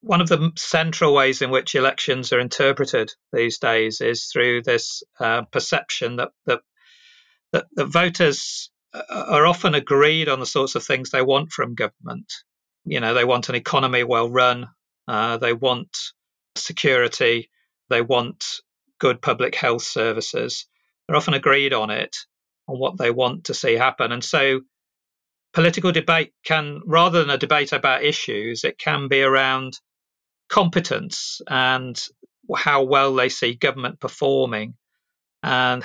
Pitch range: 125-160 Hz